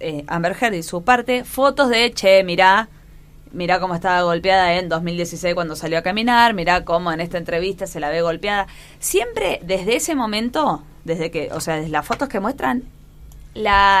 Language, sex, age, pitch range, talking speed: Spanish, female, 20-39, 170-230 Hz, 185 wpm